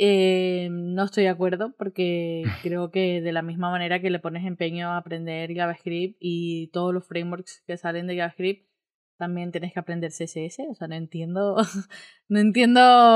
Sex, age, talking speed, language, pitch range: female, 10-29, 175 wpm, Spanish, 175-215 Hz